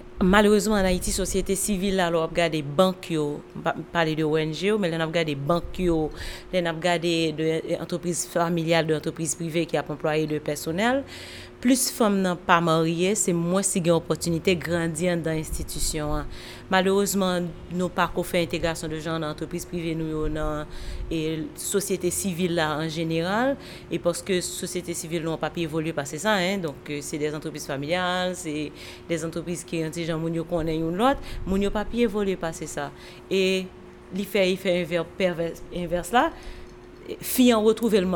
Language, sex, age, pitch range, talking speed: French, female, 30-49, 160-190 Hz, 165 wpm